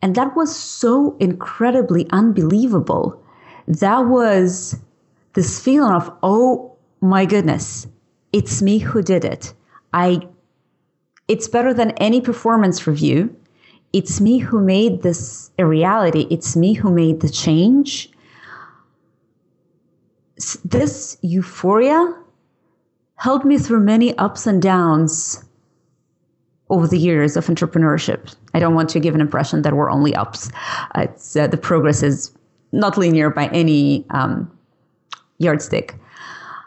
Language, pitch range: English, 165-235 Hz